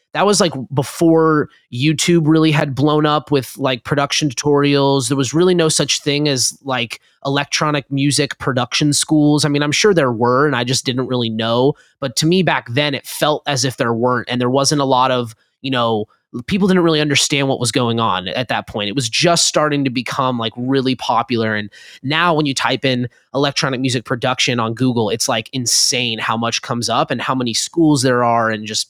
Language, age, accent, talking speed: English, 20-39, American, 210 wpm